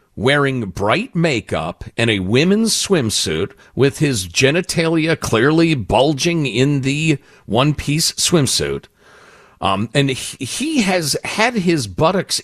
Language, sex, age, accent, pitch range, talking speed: English, male, 50-69, American, 110-180 Hz, 110 wpm